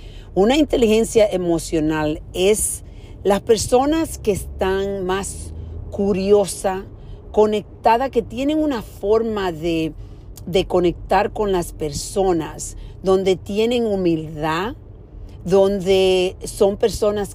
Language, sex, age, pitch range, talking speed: Spanish, female, 50-69, 160-205 Hz, 95 wpm